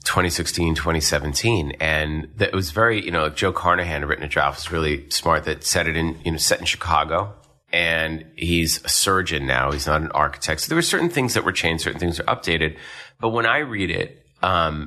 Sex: male